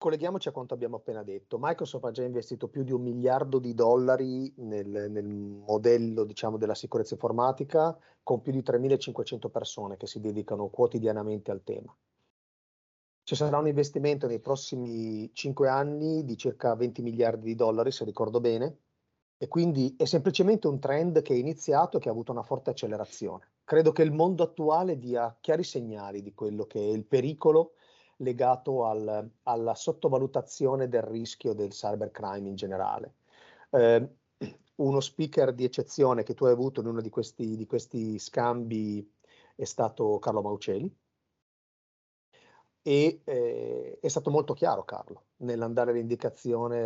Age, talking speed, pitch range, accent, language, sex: 30-49, 155 wpm, 110-150 Hz, native, Italian, male